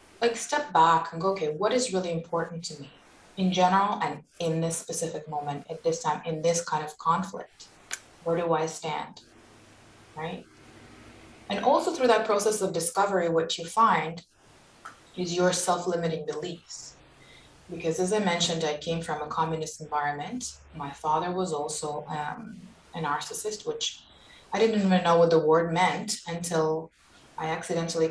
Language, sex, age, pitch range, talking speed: English, female, 20-39, 160-185 Hz, 160 wpm